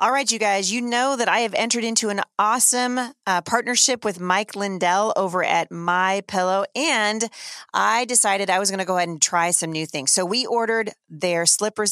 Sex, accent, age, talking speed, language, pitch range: female, American, 30-49, 195 wpm, English, 175-240 Hz